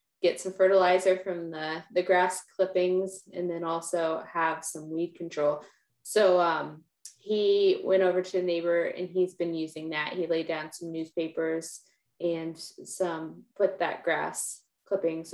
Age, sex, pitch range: 20-39, female, 165-190 Hz